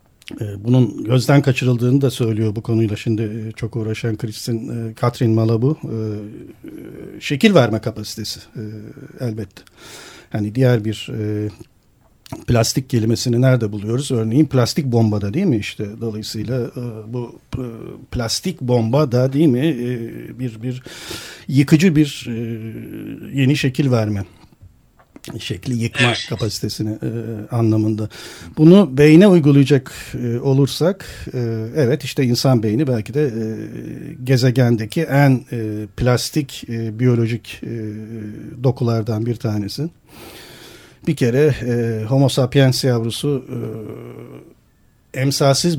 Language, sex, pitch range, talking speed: Turkish, male, 110-135 Hz, 105 wpm